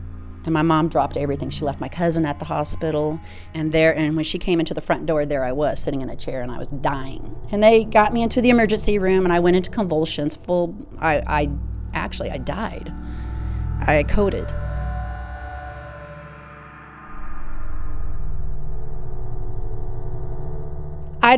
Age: 40-59